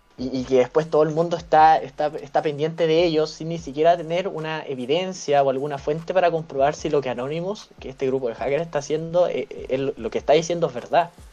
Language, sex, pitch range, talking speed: Spanish, male, 140-175 Hz, 230 wpm